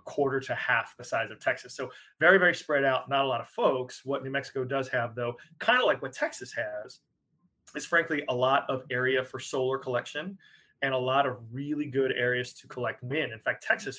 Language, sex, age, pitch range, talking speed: English, male, 30-49, 125-150 Hz, 220 wpm